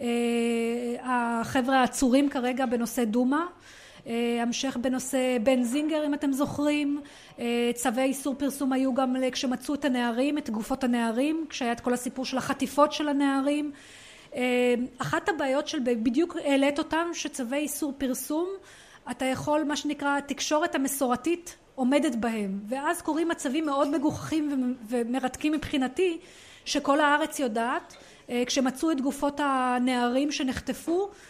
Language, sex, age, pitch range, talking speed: Hebrew, female, 30-49, 255-300 Hz, 125 wpm